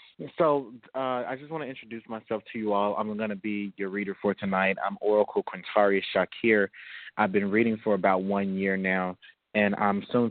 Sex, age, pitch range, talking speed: male, 20-39, 95-105 Hz, 185 wpm